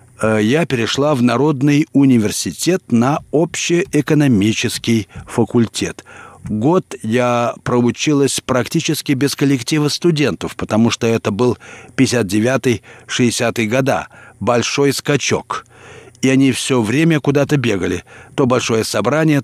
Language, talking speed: Russian, 100 wpm